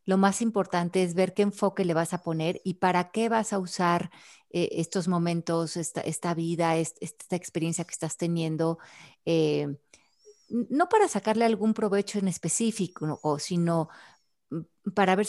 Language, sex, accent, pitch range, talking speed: Spanish, female, Mexican, 160-185 Hz, 165 wpm